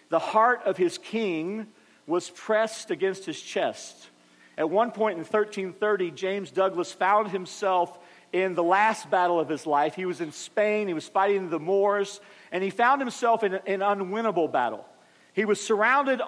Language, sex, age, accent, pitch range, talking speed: English, male, 40-59, American, 190-225 Hz, 170 wpm